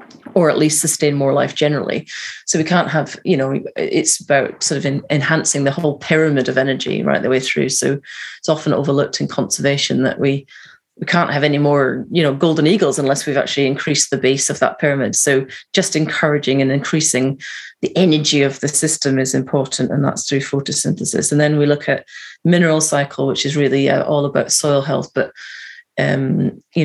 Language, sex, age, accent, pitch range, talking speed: English, female, 30-49, British, 135-155 Hz, 195 wpm